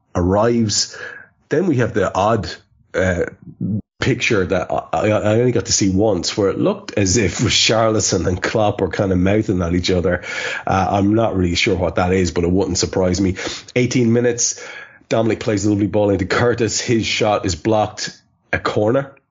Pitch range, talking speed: 95-115 Hz, 185 wpm